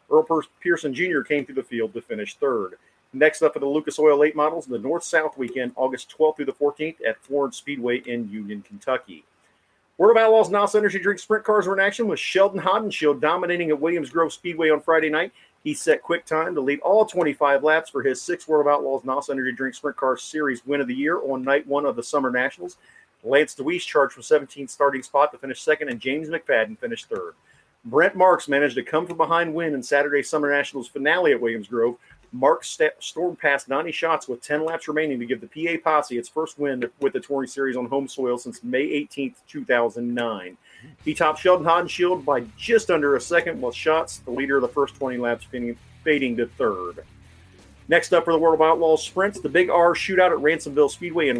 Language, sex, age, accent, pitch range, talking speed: English, male, 40-59, American, 130-170 Hz, 215 wpm